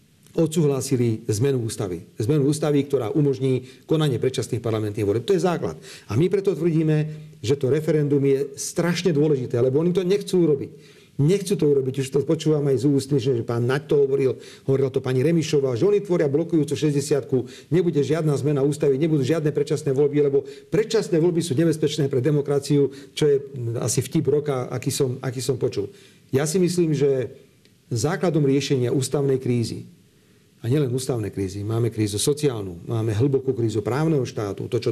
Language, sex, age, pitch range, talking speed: Slovak, male, 40-59, 125-155 Hz, 170 wpm